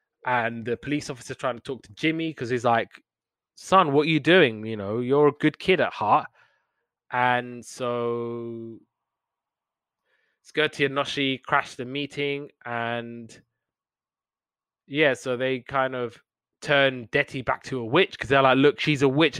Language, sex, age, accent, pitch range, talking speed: English, male, 20-39, British, 120-150 Hz, 160 wpm